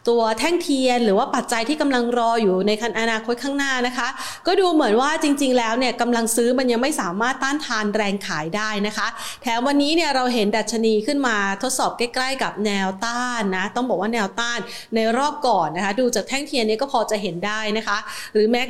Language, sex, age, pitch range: Thai, female, 30-49, 215-275 Hz